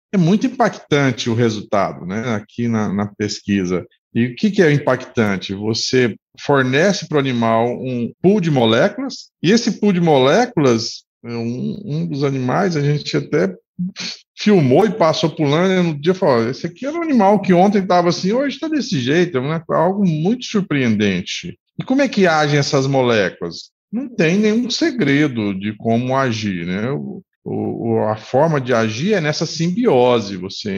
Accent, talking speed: Brazilian, 170 wpm